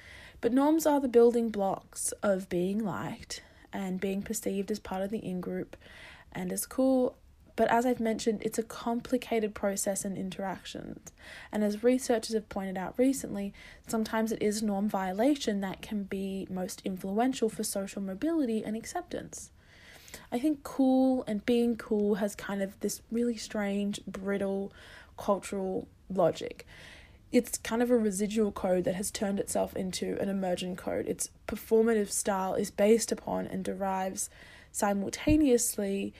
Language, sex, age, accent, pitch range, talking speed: English, female, 20-39, Australian, 195-235 Hz, 150 wpm